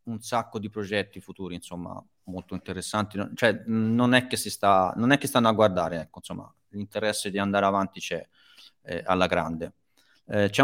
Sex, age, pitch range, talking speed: male, 30-49, 95-125 Hz, 180 wpm